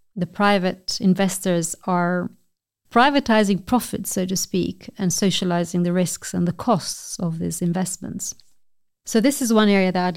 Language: English